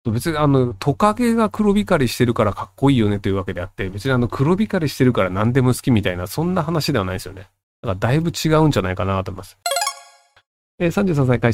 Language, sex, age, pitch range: Japanese, male, 40-59, 105-165 Hz